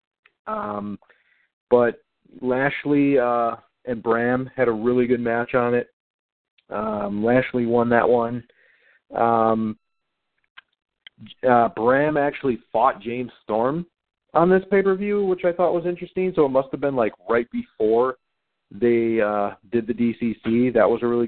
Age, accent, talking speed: 40-59, American, 145 wpm